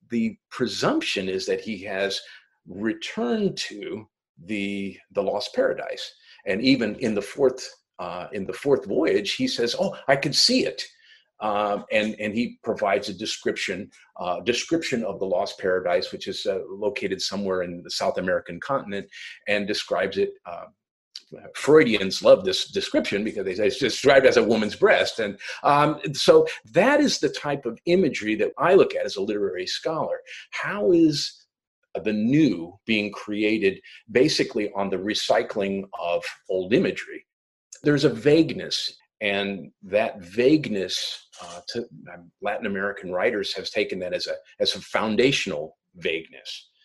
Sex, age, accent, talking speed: male, 50-69, American, 155 wpm